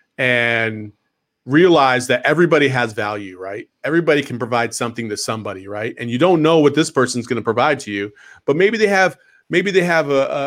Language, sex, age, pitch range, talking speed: English, male, 40-59, 115-145 Hz, 190 wpm